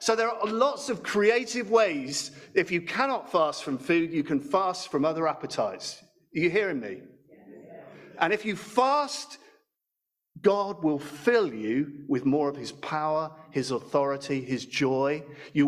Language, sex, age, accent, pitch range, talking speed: English, male, 50-69, British, 175-245 Hz, 155 wpm